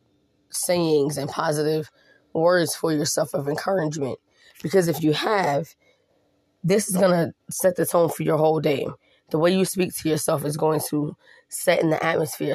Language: English